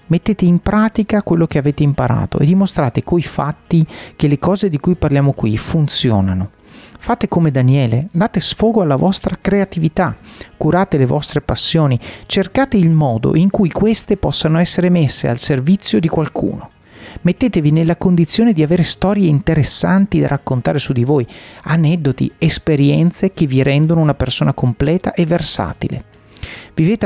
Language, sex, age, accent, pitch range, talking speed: Italian, male, 40-59, native, 140-180 Hz, 150 wpm